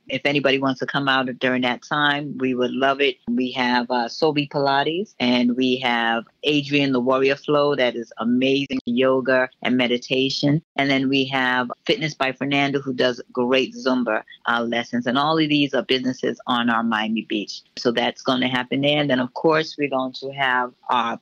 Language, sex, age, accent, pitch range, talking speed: English, female, 30-49, American, 130-165 Hz, 195 wpm